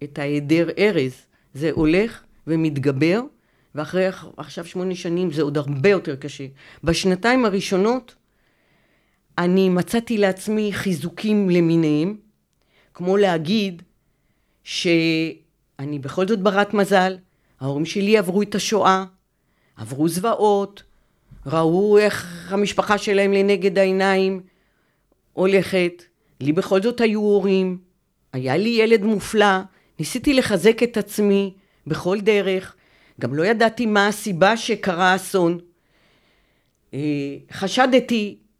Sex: female